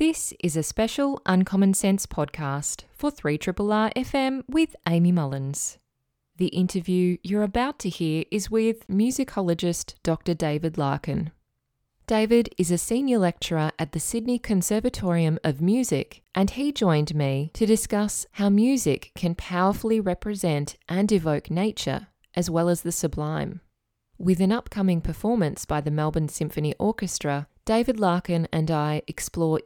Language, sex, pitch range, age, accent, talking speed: English, female, 155-205 Hz, 20-39, Australian, 140 wpm